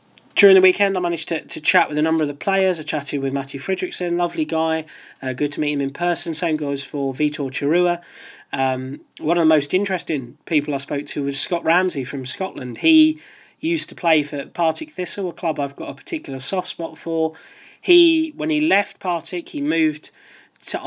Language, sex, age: English, male, 30-49